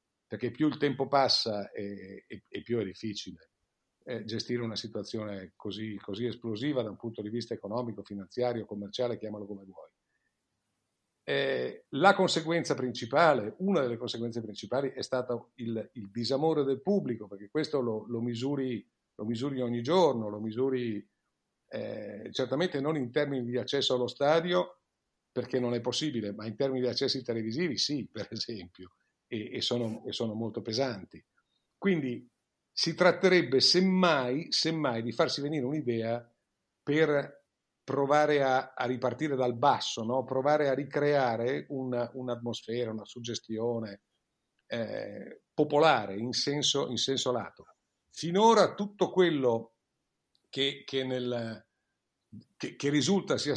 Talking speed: 130 wpm